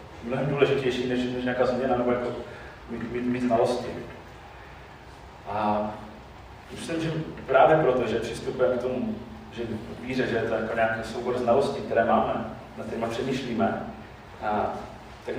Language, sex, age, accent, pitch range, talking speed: Czech, male, 30-49, native, 105-125 Hz, 150 wpm